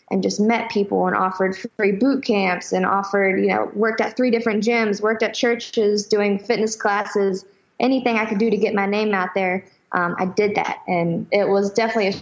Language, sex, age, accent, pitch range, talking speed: English, female, 20-39, American, 190-210 Hz, 210 wpm